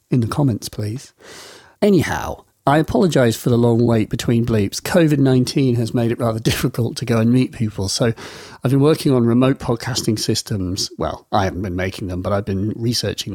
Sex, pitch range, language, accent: male, 110-135 Hz, English, British